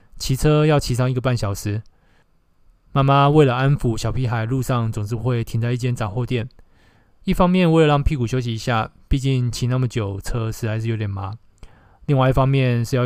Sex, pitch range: male, 105-130 Hz